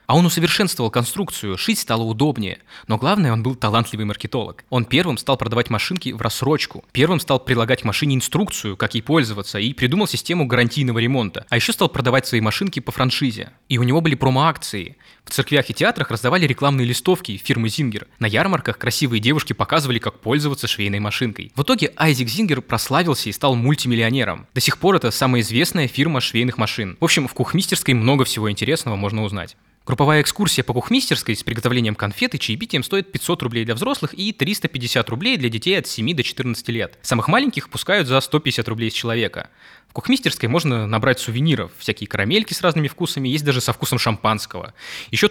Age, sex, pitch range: 20-39, male, 115-155 Hz